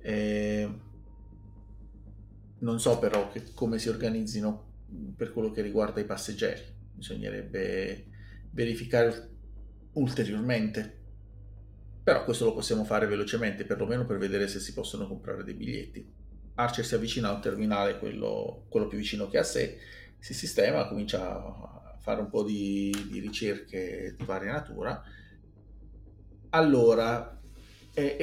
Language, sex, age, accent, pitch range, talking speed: Italian, male, 30-49, native, 105-125 Hz, 125 wpm